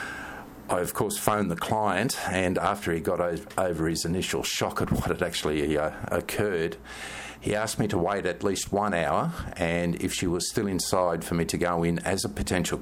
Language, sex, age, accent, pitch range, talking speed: English, male, 50-69, Australian, 85-100 Hz, 195 wpm